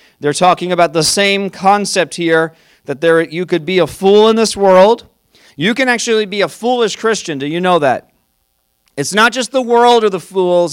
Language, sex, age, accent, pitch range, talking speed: English, male, 40-59, American, 160-215 Hz, 195 wpm